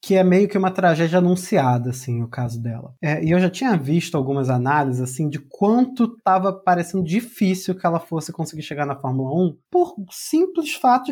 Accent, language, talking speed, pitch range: Brazilian, Portuguese, 190 wpm, 150-225 Hz